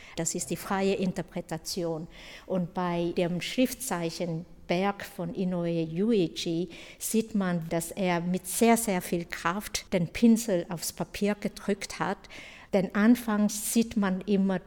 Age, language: 60-79, German